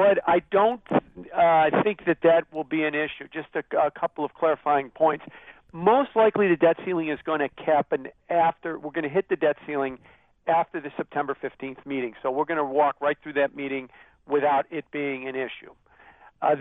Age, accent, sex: 50-69, American, male